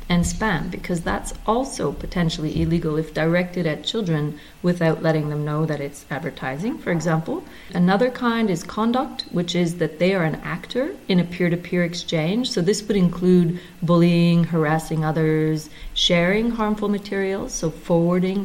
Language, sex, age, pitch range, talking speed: English, female, 30-49, 160-195 Hz, 155 wpm